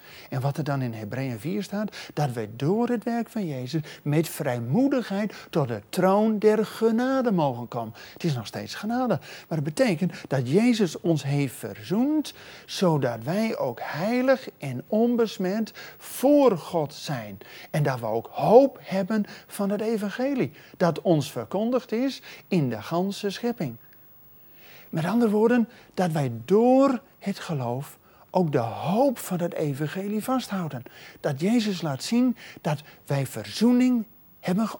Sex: male